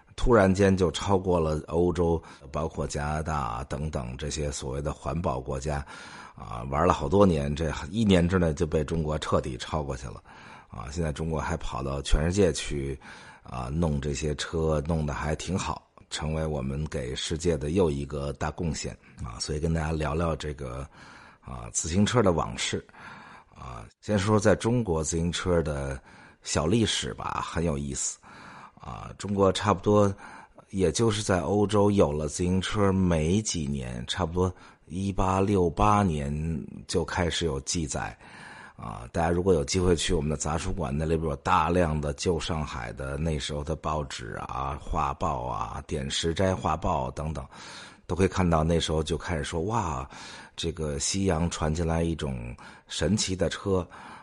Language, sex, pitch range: English, male, 75-90 Hz